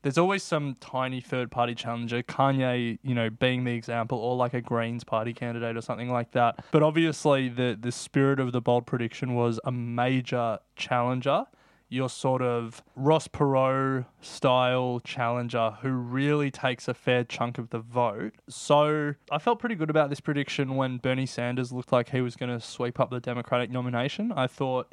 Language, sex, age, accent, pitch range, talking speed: English, male, 20-39, Australian, 120-135 Hz, 180 wpm